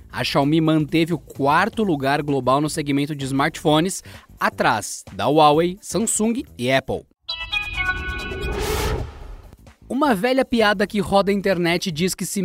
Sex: male